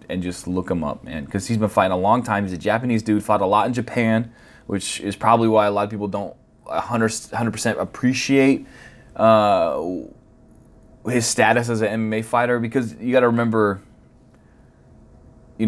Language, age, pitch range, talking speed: English, 20-39, 95-115 Hz, 180 wpm